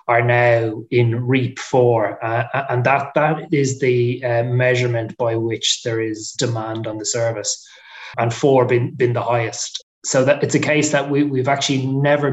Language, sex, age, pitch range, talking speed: English, male, 20-39, 115-130 Hz, 180 wpm